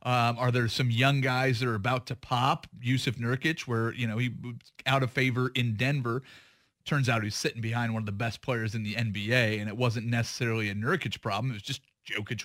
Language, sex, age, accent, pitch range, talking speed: English, male, 30-49, American, 120-140 Hz, 215 wpm